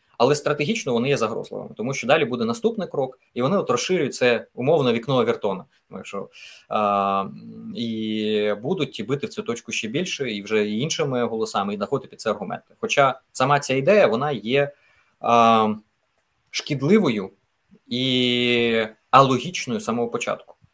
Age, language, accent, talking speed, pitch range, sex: 20-39, Ukrainian, native, 140 wpm, 120-185 Hz, male